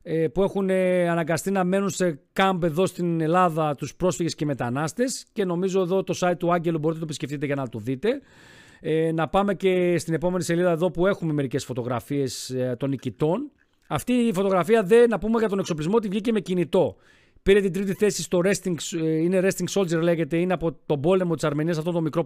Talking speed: 200 wpm